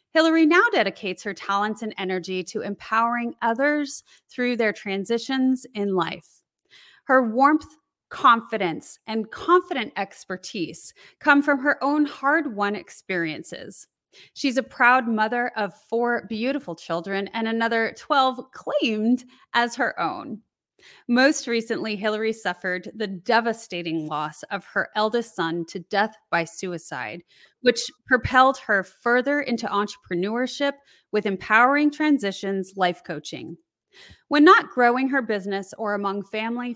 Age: 30-49